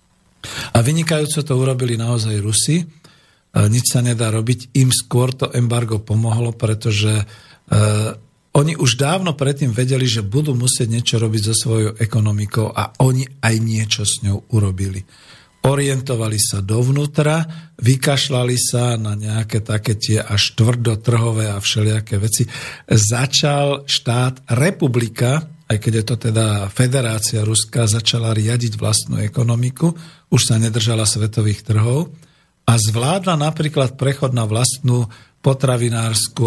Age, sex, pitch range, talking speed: 50-69, male, 110-135 Hz, 125 wpm